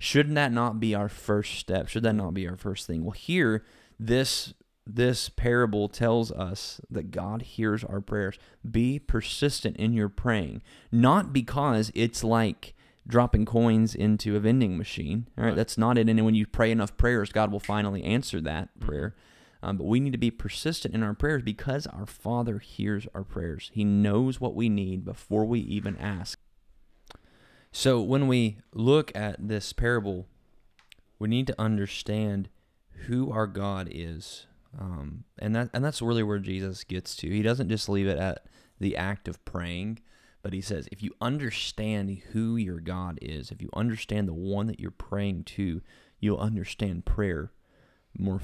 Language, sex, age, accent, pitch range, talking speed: English, male, 30-49, American, 100-115 Hz, 175 wpm